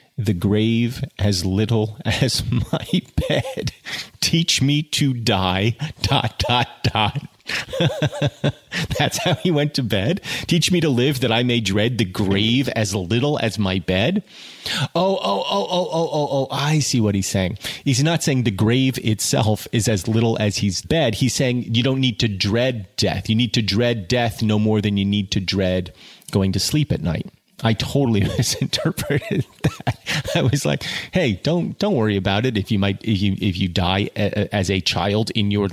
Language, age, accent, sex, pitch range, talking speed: English, 30-49, American, male, 105-140 Hz, 185 wpm